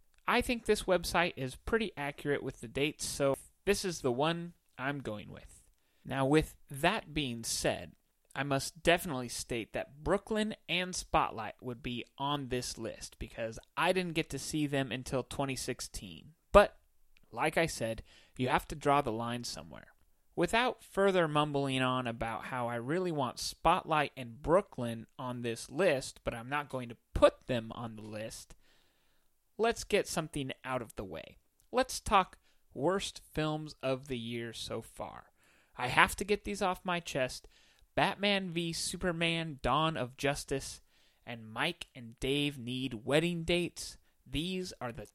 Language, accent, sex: English, American, male